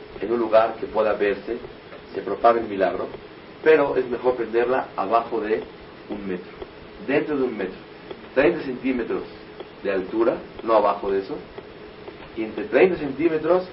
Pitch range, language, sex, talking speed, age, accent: 115-150 Hz, German, male, 145 wpm, 40-59, Mexican